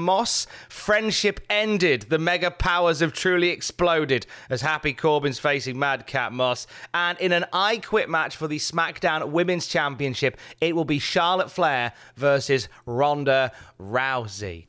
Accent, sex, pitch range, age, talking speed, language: British, male, 125-185 Hz, 30-49, 145 wpm, English